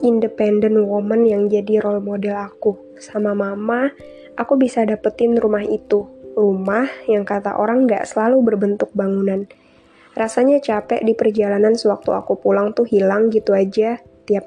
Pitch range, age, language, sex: 200-225 Hz, 20-39, Indonesian, female